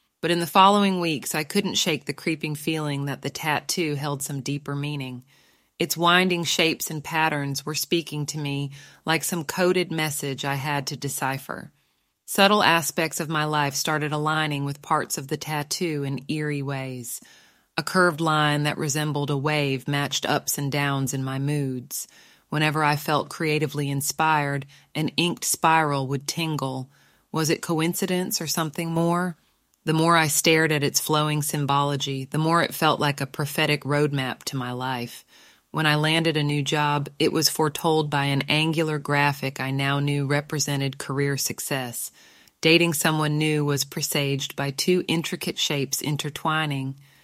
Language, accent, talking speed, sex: English, American, 165 wpm, female